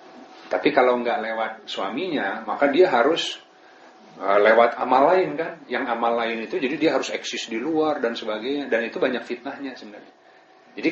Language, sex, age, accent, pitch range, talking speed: Indonesian, male, 40-59, native, 110-130 Hz, 165 wpm